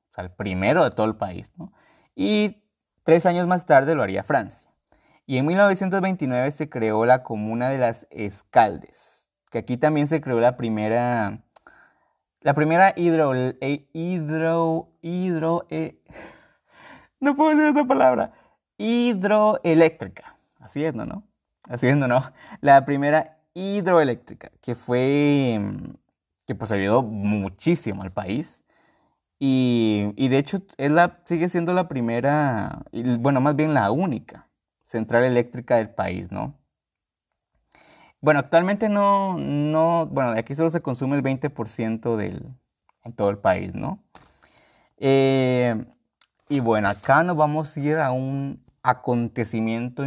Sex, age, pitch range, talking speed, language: male, 20-39, 115-165 Hz, 130 wpm, Spanish